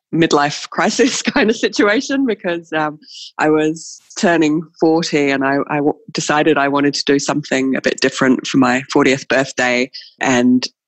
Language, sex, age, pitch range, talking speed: English, female, 20-39, 130-165 Hz, 160 wpm